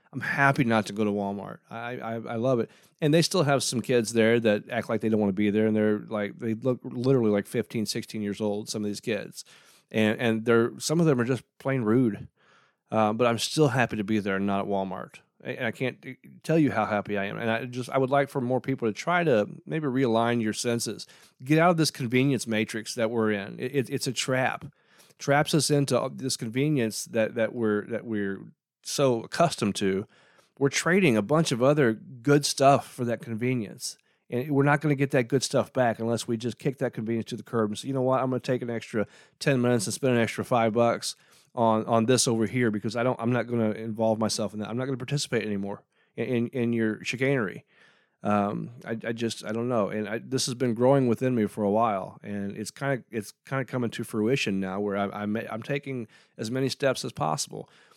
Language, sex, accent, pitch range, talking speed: English, male, American, 110-130 Hz, 240 wpm